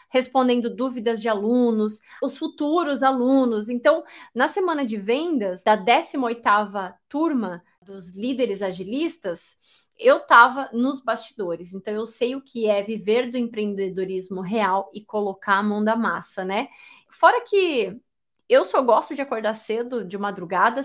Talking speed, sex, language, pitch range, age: 140 wpm, female, Portuguese, 210-260 Hz, 20-39